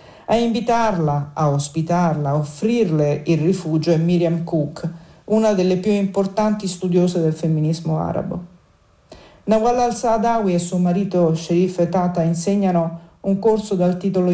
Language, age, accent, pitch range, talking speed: Italian, 50-69, native, 165-205 Hz, 130 wpm